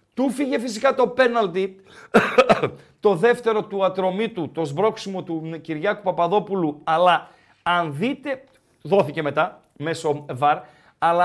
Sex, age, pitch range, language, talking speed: male, 50-69, 170-245 Hz, Greek, 115 wpm